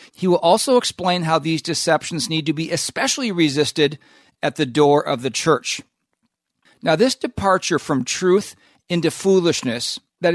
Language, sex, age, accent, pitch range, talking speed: English, male, 50-69, American, 145-185 Hz, 150 wpm